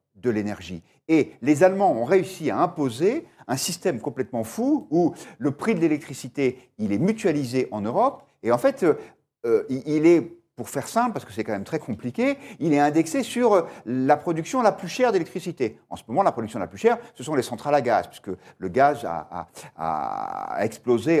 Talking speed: 200 wpm